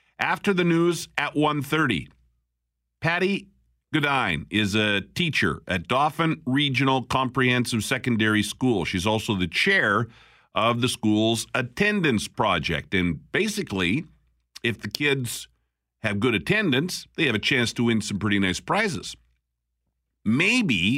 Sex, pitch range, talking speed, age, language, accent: male, 90-135 Hz, 125 wpm, 50-69, English, American